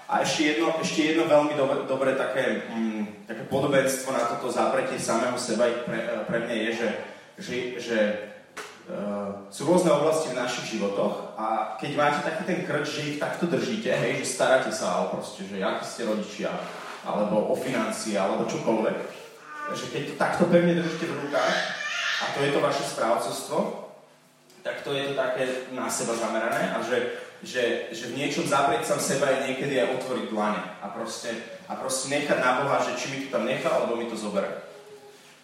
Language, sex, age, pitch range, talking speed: Slovak, male, 20-39, 115-160 Hz, 185 wpm